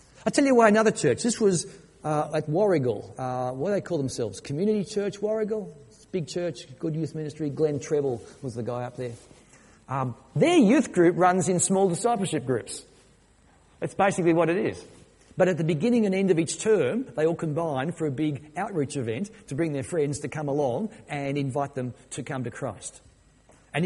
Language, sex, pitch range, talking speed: English, male, 130-185 Hz, 200 wpm